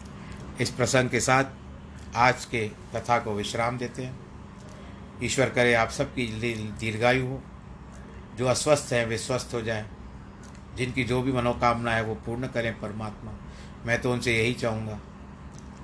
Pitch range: 105-125 Hz